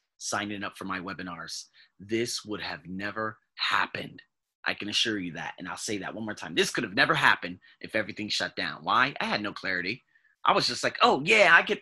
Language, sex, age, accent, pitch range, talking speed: English, male, 30-49, American, 105-170 Hz, 225 wpm